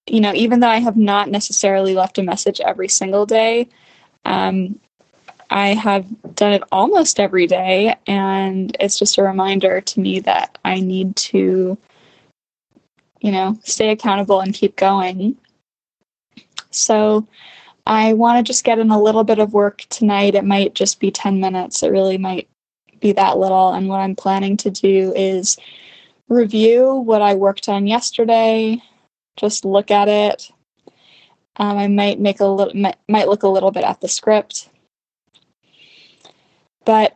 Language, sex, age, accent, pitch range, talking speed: English, female, 10-29, American, 195-220 Hz, 155 wpm